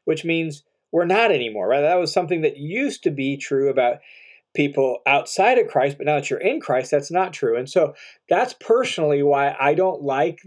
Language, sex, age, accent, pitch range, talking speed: English, male, 40-59, American, 140-185 Hz, 205 wpm